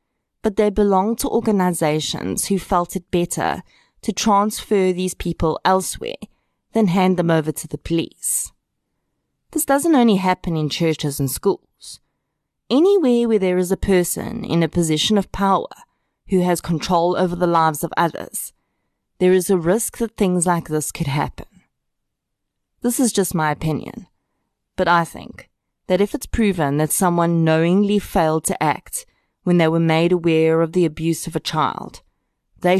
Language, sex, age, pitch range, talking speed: English, female, 30-49, 155-195 Hz, 160 wpm